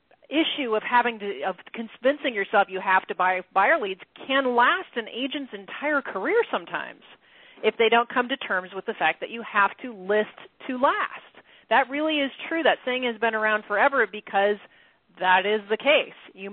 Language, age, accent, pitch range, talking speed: English, 40-59, American, 200-275 Hz, 190 wpm